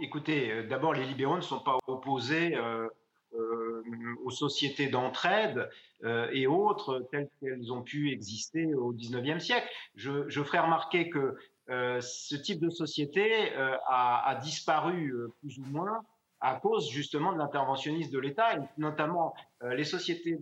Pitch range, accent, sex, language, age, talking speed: 130-170 Hz, French, male, French, 40-59, 160 wpm